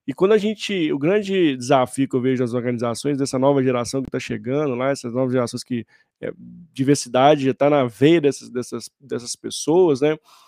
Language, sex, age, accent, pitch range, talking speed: Portuguese, male, 20-39, Brazilian, 135-175 Hz, 195 wpm